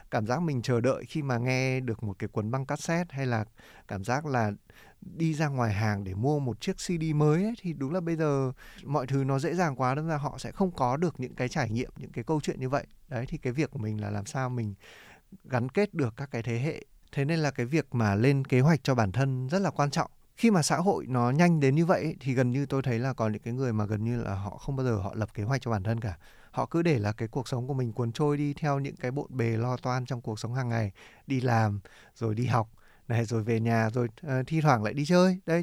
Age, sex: 20-39, male